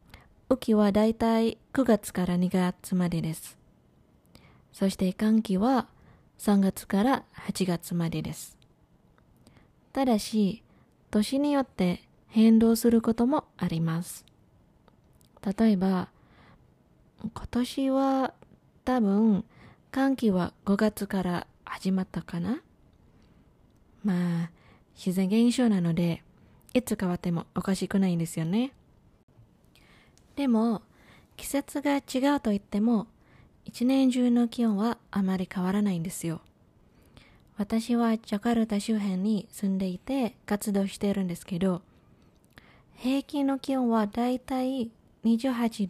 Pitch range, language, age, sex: 185-240 Hz, Japanese, 20-39, female